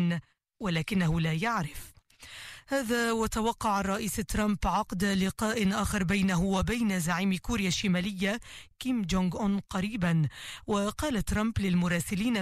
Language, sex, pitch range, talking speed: Hebrew, female, 175-215 Hz, 105 wpm